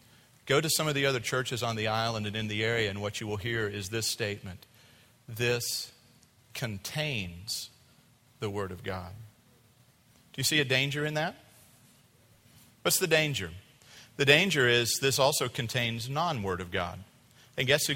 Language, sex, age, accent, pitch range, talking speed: English, male, 40-59, American, 115-145 Hz, 165 wpm